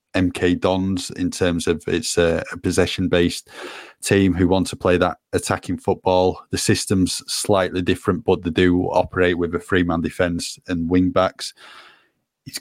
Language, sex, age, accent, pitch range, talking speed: English, male, 20-39, British, 90-95 Hz, 150 wpm